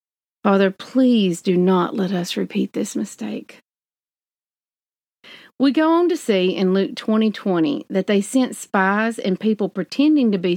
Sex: female